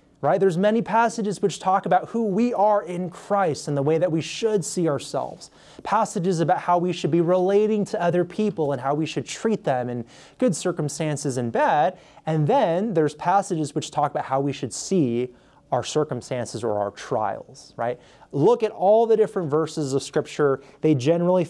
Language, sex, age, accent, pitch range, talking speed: English, male, 20-39, American, 140-195 Hz, 190 wpm